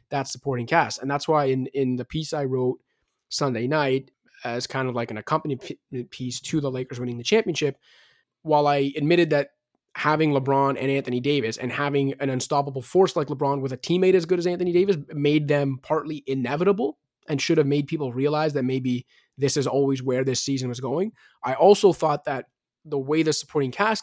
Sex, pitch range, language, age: male, 135-155 Hz, English, 20-39